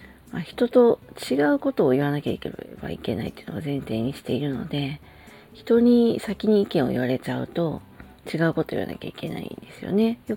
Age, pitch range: 40-59, 135-205 Hz